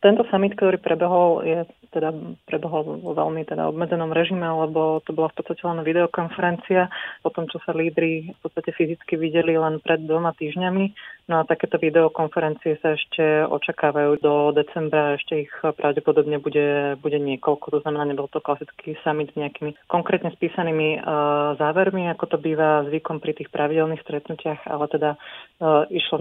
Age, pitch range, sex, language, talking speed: 30-49, 145-165 Hz, female, Slovak, 160 wpm